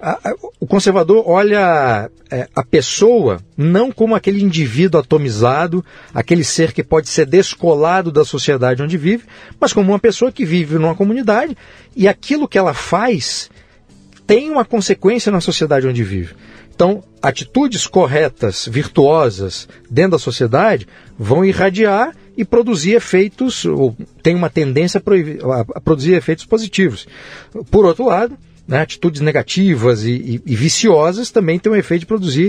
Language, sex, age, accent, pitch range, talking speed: Portuguese, male, 50-69, Brazilian, 145-205 Hz, 140 wpm